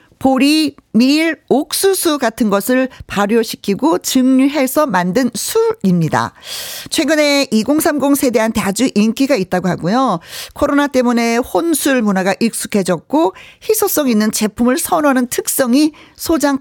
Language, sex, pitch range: Korean, female, 200-300 Hz